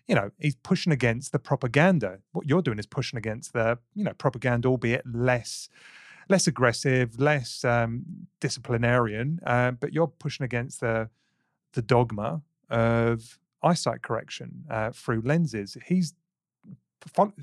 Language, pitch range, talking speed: English, 120-160 Hz, 140 wpm